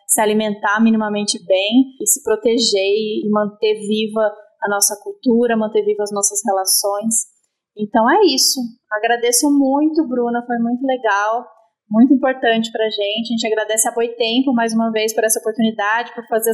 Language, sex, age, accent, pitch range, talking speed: Portuguese, female, 20-39, Brazilian, 215-260 Hz, 160 wpm